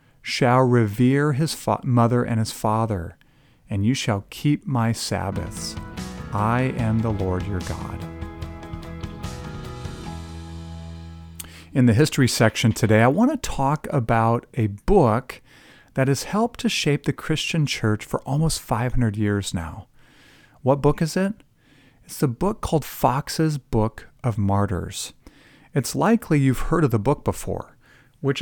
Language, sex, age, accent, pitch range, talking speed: English, male, 40-59, American, 105-140 Hz, 135 wpm